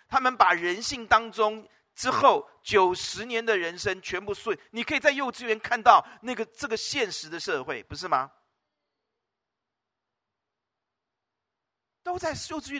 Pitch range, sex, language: 145-220 Hz, male, Chinese